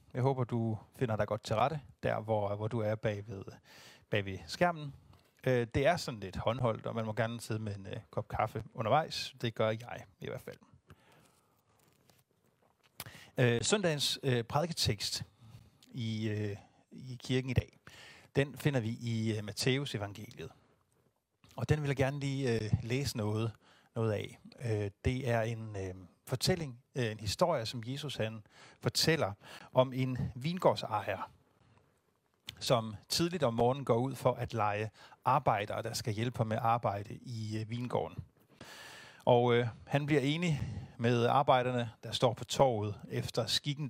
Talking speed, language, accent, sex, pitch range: 140 wpm, Danish, native, male, 110-130 Hz